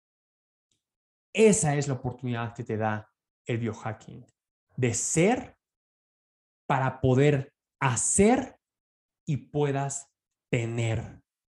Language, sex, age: Spanish, male, 30-49